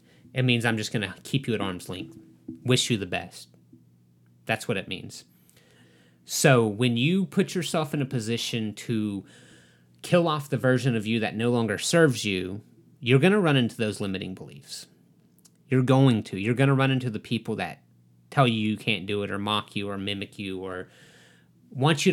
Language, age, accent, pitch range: English, 30-49, American, 90-130 Hz